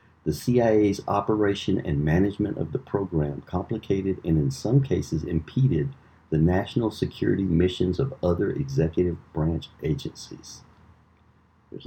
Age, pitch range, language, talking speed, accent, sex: 50-69, 85-115 Hz, English, 120 wpm, American, male